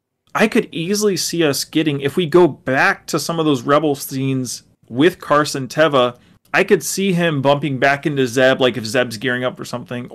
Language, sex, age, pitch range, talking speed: English, male, 30-49, 130-155 Hz, 200 wpm